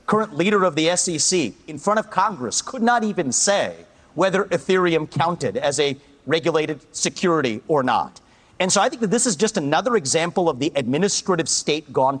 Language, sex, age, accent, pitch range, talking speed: English, male, 40-59, American, 155-205 Hz, 180 wpm